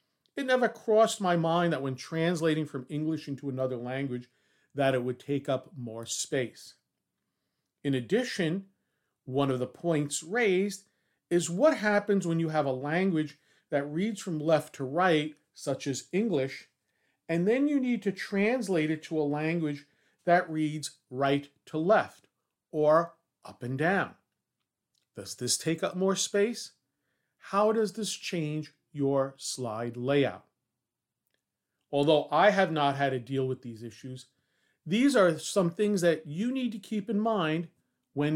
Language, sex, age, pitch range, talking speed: English, male, 40-59, 135-185 Hz, 155 wpm